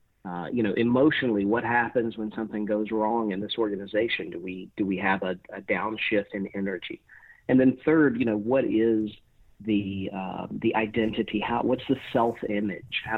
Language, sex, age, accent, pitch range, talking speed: English, male, 50-69, American, 100-115 Hz, 180 wpm